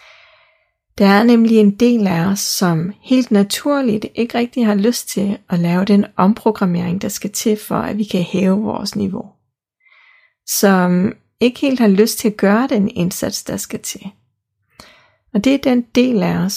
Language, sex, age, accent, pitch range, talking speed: Danish, female, 30-49, native, 180-225 Hz, 180 wpm